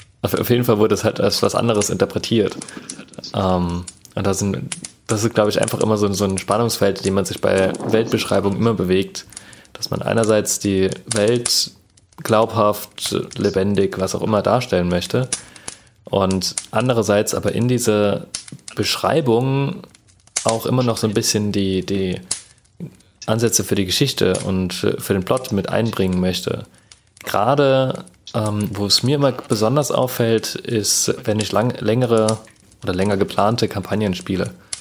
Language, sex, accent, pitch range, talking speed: German, male, German, 100-115 Hz, 145 wpm